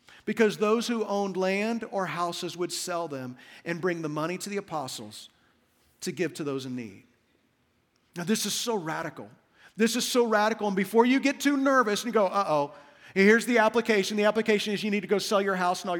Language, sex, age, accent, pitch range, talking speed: English, male, 40-59, American, 175-230 Hz, 215 wpm